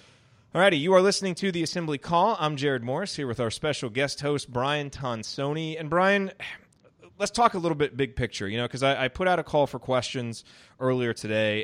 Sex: male